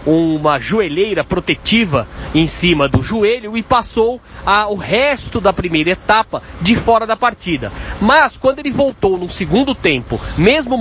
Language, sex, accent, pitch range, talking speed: Portuguese, male, Brazilian, 180-245 Hz, 145 wpm